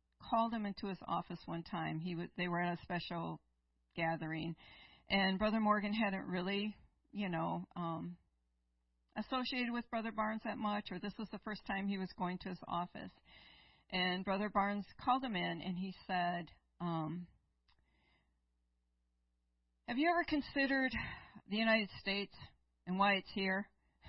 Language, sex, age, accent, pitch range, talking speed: English, female, 50-69, American, 165-210 Hz, 155 wpm